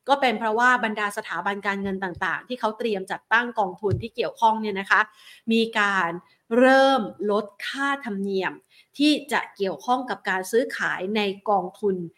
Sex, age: female, 30-49